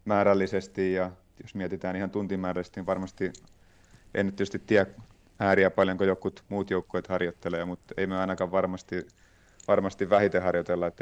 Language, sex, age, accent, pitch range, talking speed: Finnish, male, 30-49, native, 90-100 Hz, 140 wpm